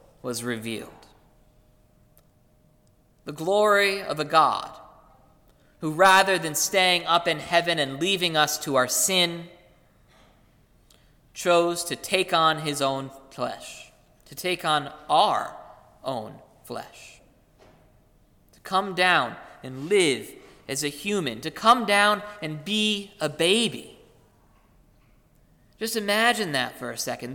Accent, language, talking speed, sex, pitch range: American, English, 120 wpm, male, 150-205 Hz